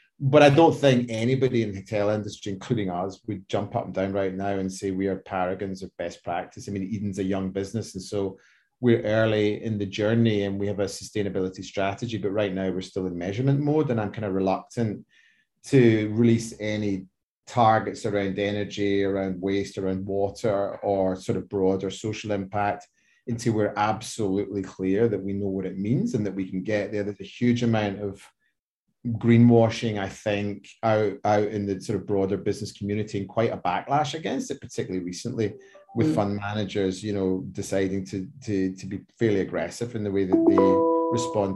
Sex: male